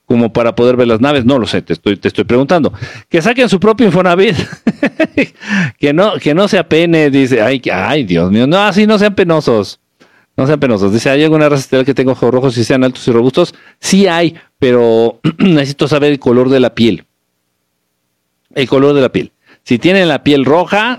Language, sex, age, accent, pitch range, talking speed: Spanish, male, 50-69, Mexican, 110-165 Hz, 205 wpm